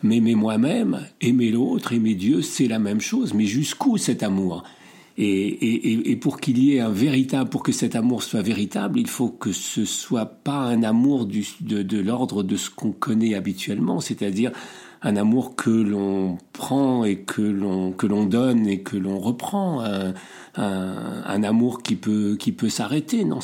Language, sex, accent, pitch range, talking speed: French, male, French, 100-155 Hz, 190 wpm